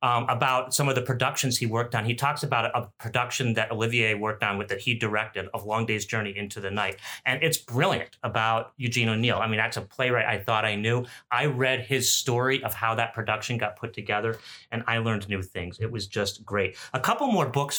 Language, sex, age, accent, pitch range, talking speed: English, male, 30-49, American, 110-130 Hz, 235 wpm